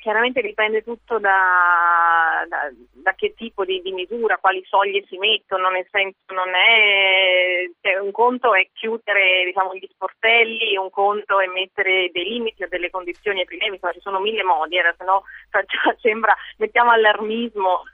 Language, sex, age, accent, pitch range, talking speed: Italian, female, 30-49, native, 185-235 Hz, 165 wpm